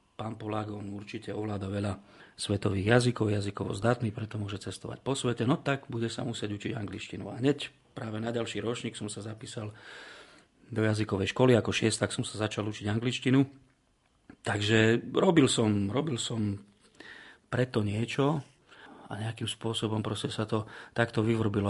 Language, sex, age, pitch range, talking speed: Slovak, male, 40-59, 105-125 Hz, 150 wpm